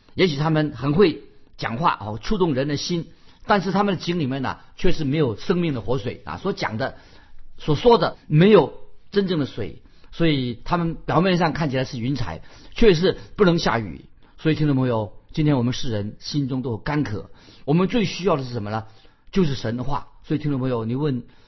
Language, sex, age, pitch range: Chinese, male, 50-69, 120-165 Hz